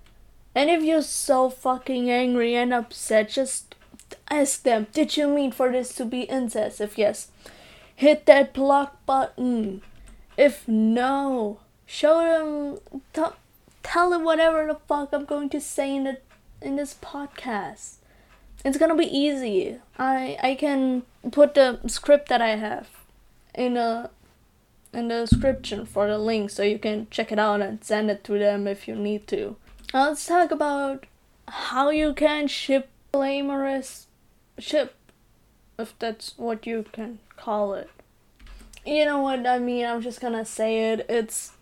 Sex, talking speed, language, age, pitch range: female, 155 wpm, English, 20-39, 225-285 Hz